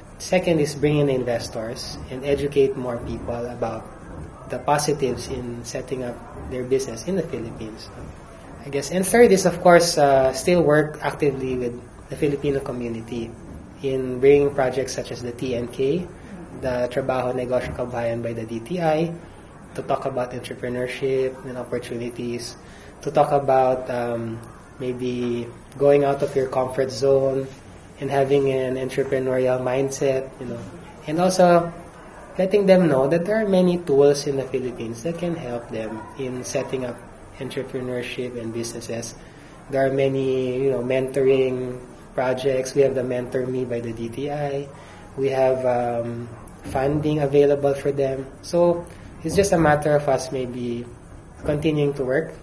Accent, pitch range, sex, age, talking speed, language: native, 125-140 Hz, male, 20-39, 150 wpm, Filipino